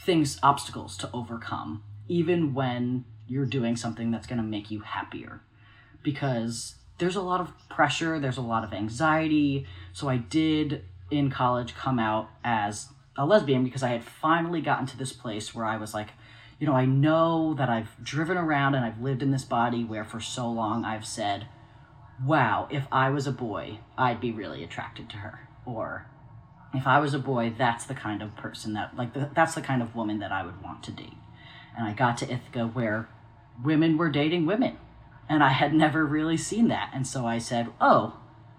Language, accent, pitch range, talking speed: English, American, 115-140 Hz, 195 wpm